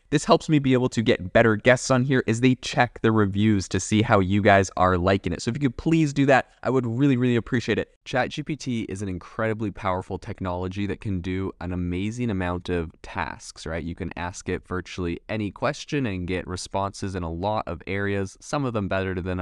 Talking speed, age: 225 wpm, 20-39